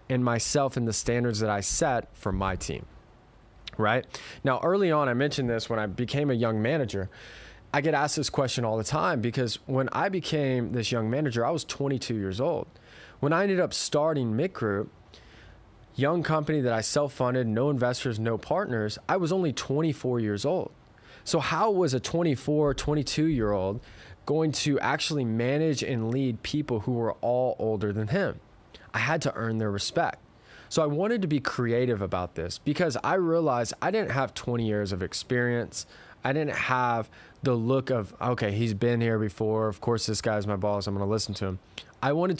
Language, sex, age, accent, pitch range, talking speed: English, male, 20-39, American, 110-145 Hz, 190 wpm